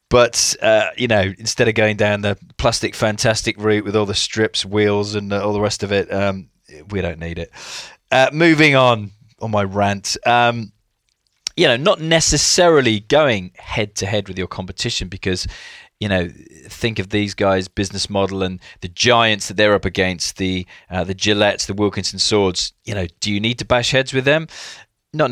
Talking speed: 185 wpm